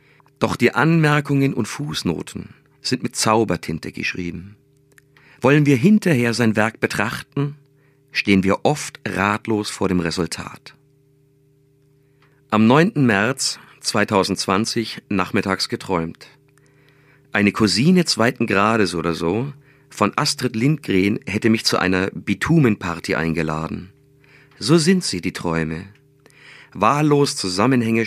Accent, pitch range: German, 100-140 Hz